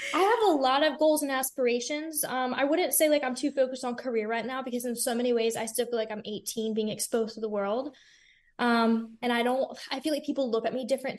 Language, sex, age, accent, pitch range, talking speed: English, female, 10-29, American, 220-265 Hz, 255 wpm